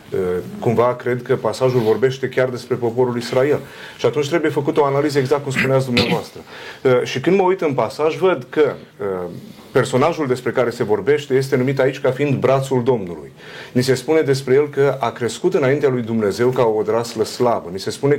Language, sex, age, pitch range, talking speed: Romanian, male, 40-59, 125-165 Hz, 200 wpm